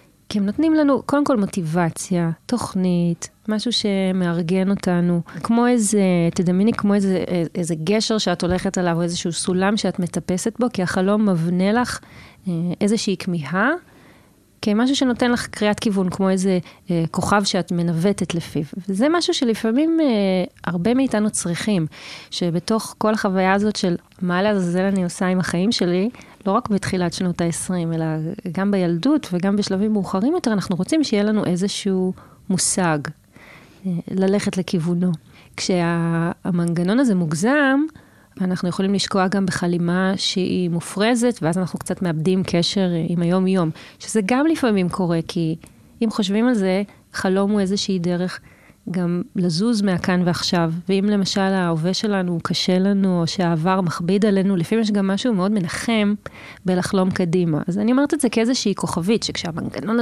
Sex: female